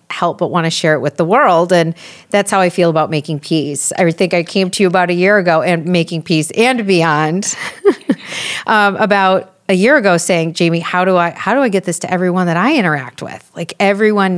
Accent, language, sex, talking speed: American, English, female, 230 wpm